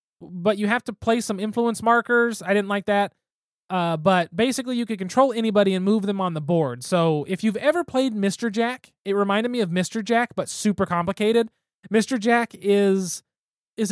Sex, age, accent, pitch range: male, 20-39, American, 185-240 Hz